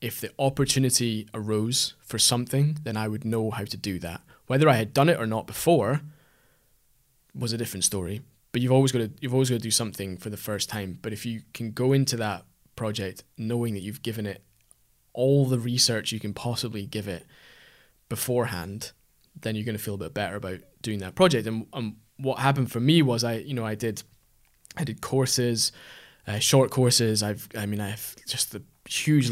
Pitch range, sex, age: 105-125 Hz, male, 20-39